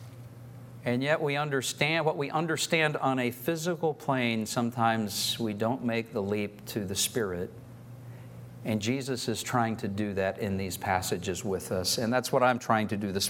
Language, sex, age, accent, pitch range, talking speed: English, male, 50-69, American, 115-135 Hz, 180 wpm